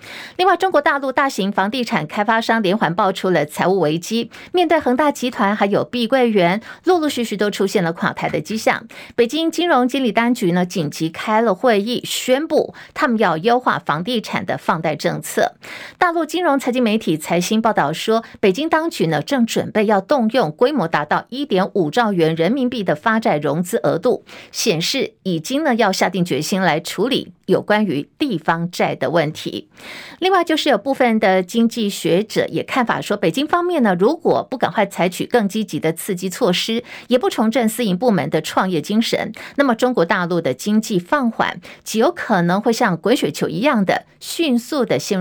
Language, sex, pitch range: Chinese, female, 185-255 Hz